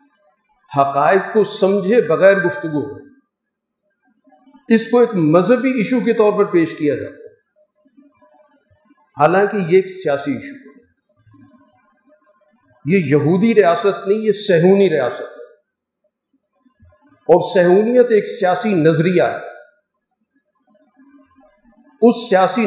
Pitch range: 175-260 Hz